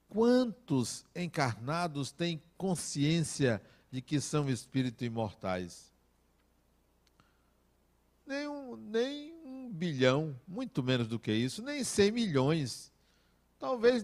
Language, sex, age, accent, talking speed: Portuguese, male, 60-79, Brazilian, 100 wpm